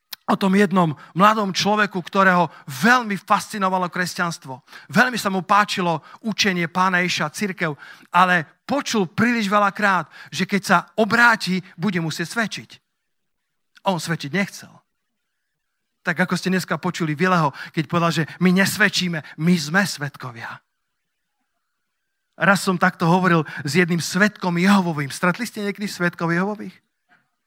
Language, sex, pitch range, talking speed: Slovak, male, 165-205 Hz, 125 wpm